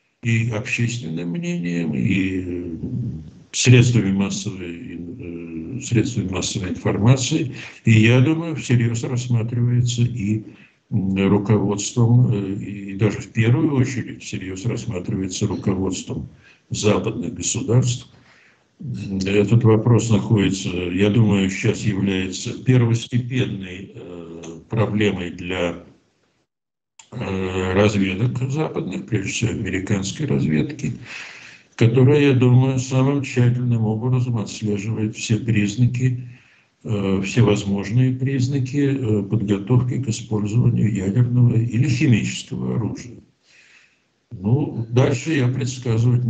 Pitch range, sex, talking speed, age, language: 100-125 Hz, male, 80 wpm, 60-79, Russian